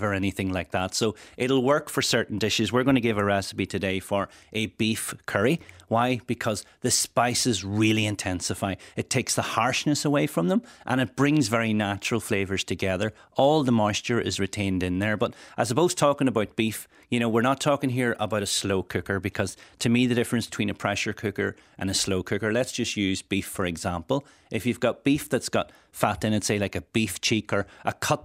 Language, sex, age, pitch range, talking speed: English, male, 30-49, 95-120 Hz, 215 wpm